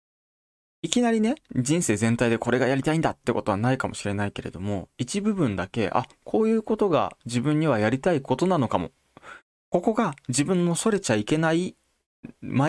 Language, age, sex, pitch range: Japanese, 20-39, male, 100-145 Hz